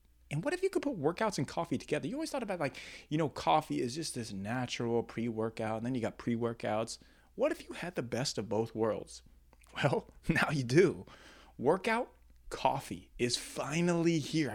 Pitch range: 110-160 Hz